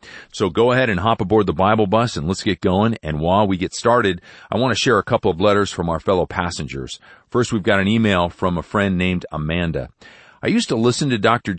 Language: English